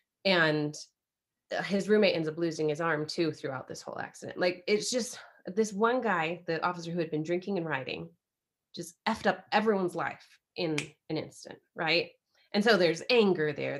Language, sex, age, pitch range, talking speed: English, female, 30-49, 165-220 Hz, 180 wpm